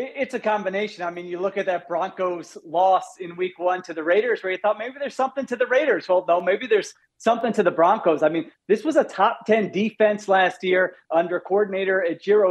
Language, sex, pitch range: English, male, 180-225 Hz